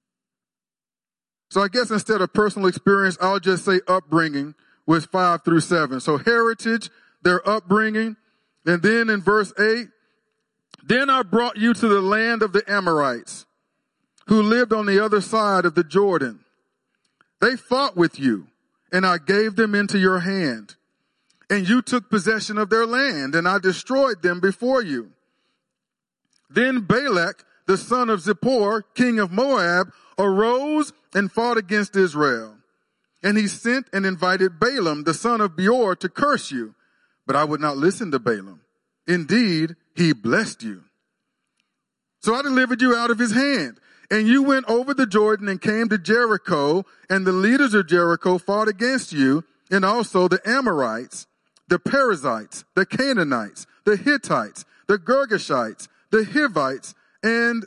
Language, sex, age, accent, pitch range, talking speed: English, male, 40-59, American, 185-235 Hz, 150 wpm